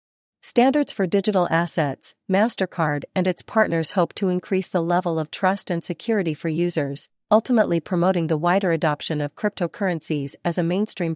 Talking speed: 155 wpm